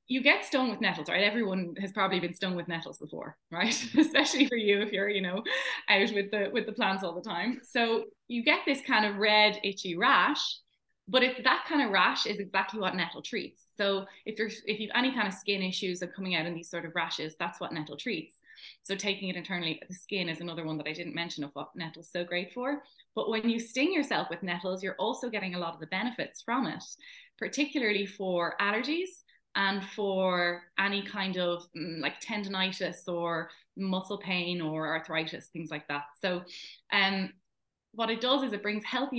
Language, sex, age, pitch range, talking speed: English, female, 20-39, 170-220 Hz, 210 wpm